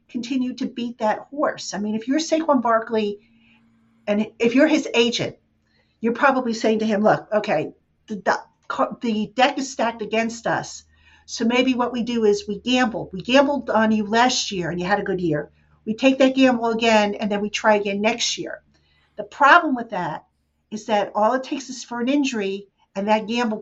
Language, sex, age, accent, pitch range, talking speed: English, female, 50-69, American, 205-245 Hz, 200 wpm